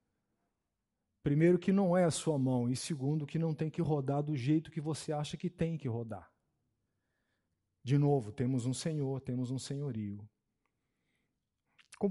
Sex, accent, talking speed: male, Brazilian, 160 wpm